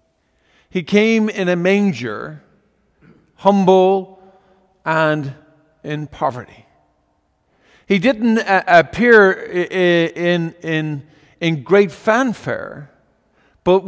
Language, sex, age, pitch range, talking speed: English, male, 50-69, 160-210 Hz, 90 wpm